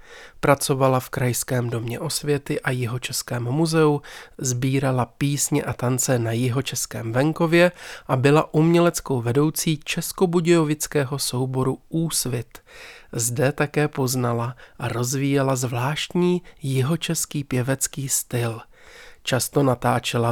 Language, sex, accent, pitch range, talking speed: Czech, male, native, 120-150 Hz, 95 wpm